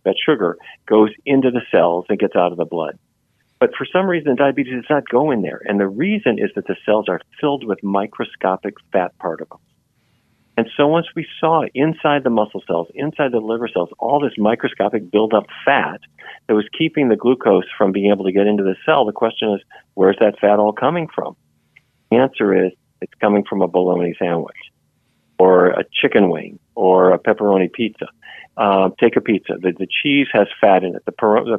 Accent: American